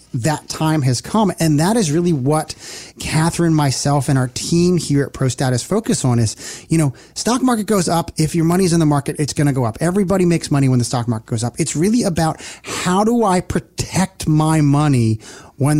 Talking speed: 215 wpm